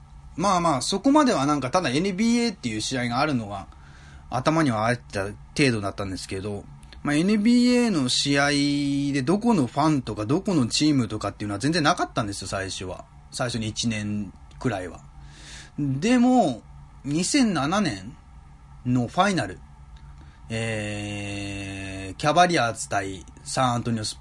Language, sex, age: Japanese, male, 20-39